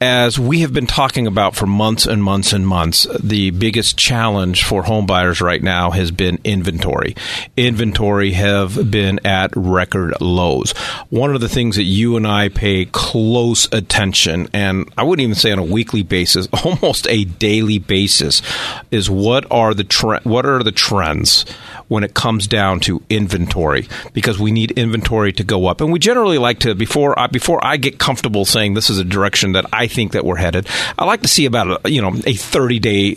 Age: 40-59